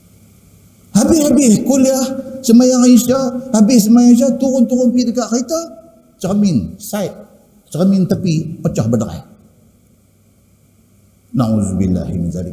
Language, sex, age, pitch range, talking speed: Malay, male, 50-69, 150-240 Hz, 85 wpm